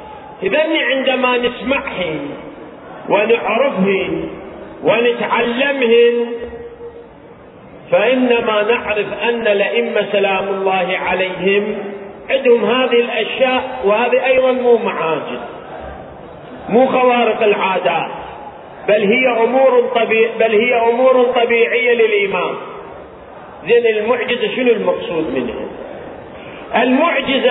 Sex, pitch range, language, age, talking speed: male, 235-285 Hz, Arabic, 40-59, 80 wpm